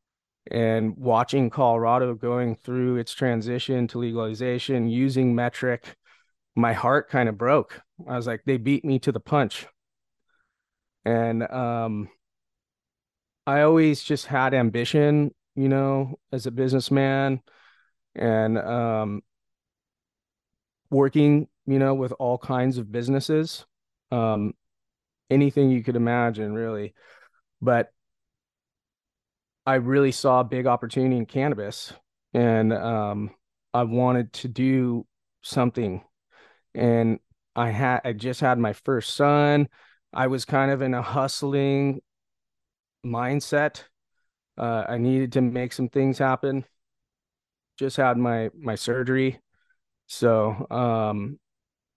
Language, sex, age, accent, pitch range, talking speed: English, male, 30-49, American, 115-135 Hz, 115 wpm